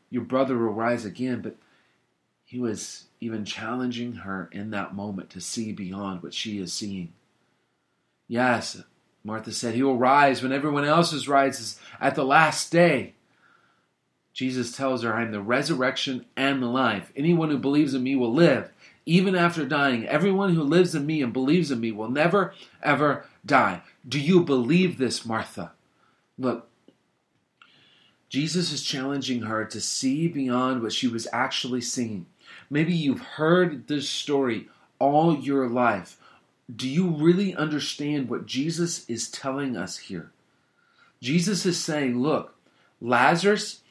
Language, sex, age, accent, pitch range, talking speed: English, male, 40-59, American, 120-160 Hz, 150 wpm